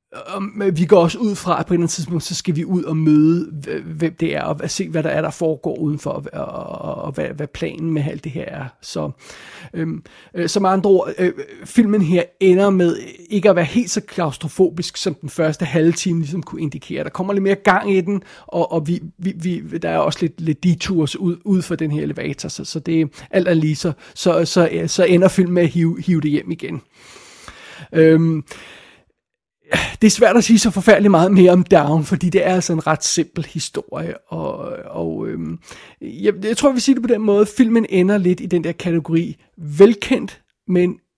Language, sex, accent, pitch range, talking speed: Danish, male, native, 160-195 Hz, 220 wpm